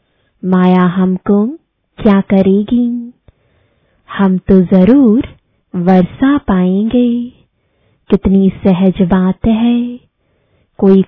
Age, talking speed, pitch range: 20-39, 75 wpm, 190-240 Hz